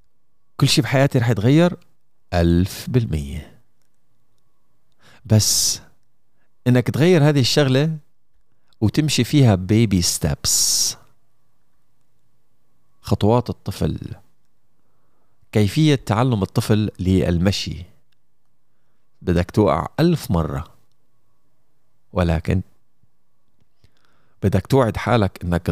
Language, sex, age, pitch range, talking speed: Arabic, male, 40-59, 95-130 Hz, 70 wpm